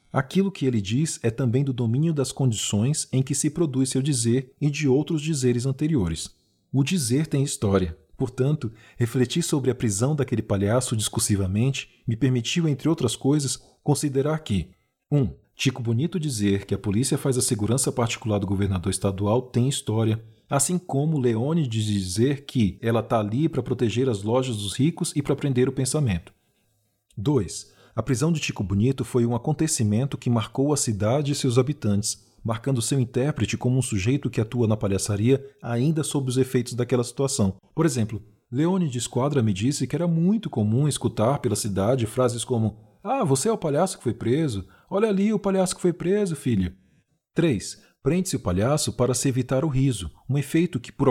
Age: 40-59